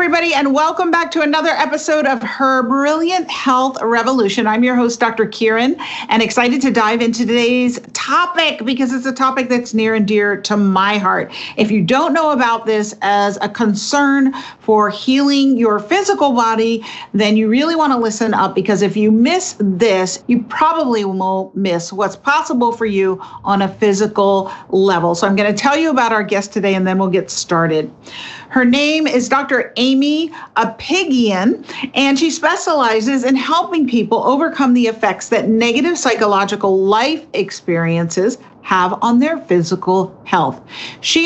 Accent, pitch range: American, 200-270 Hz